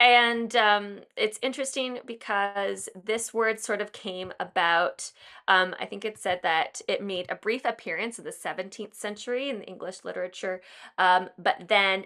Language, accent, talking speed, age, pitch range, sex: English, American, 165 wpm, 20-39, 185-235 Hz, female